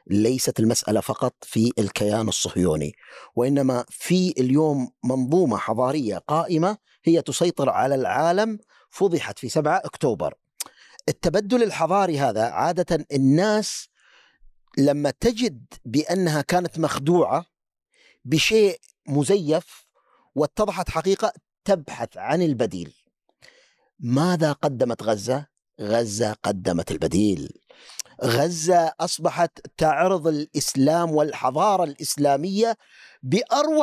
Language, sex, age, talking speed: Arabic, male, 50-69, 90 wpm